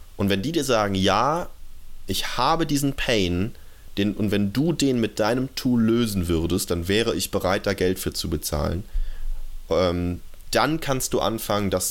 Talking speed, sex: 175 wpm, male